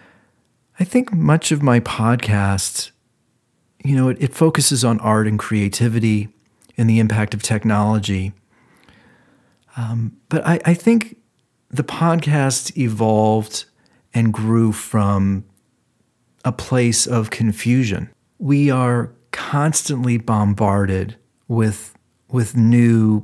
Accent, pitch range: American, 105-130 Hz